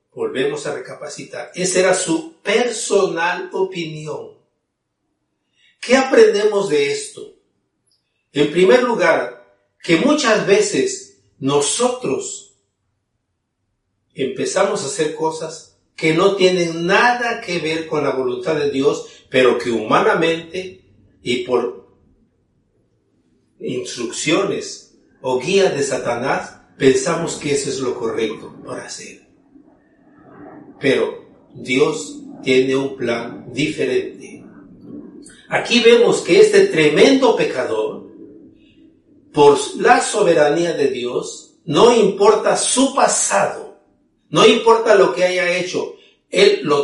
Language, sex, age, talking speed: English, male, 50-69, 105 wpm